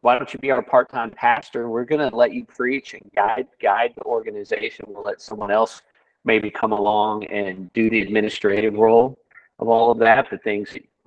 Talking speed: 200 wpm